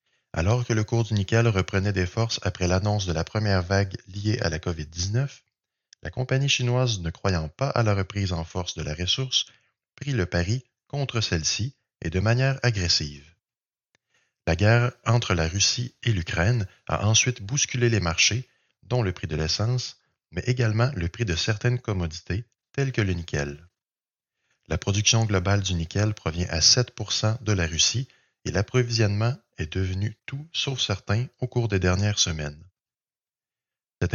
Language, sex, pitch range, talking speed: French, male, 90-120 Hz, 165 wpm